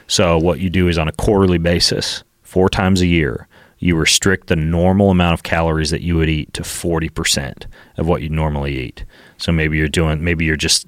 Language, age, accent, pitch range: English, 30-49, American, 80-90 Hz